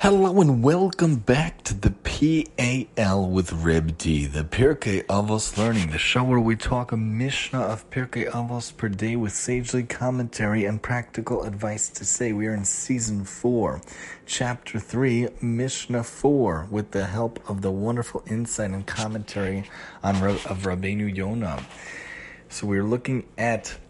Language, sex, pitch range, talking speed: English, male, 100-120 Hz, 150 wpm